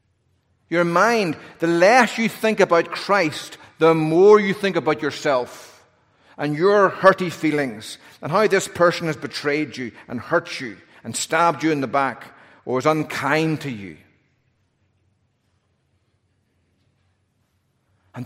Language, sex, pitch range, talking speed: English, male, 115-175 Hz, 130 wpm